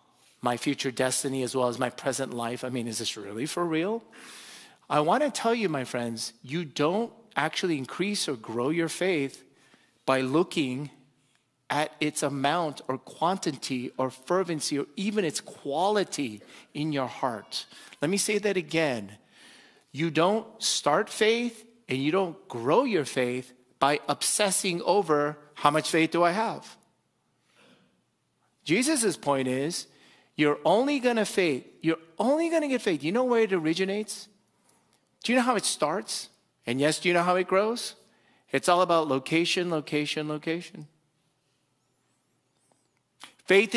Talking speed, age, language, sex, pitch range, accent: 150 wpm, 40-59, English, male, 140-190 Hz, American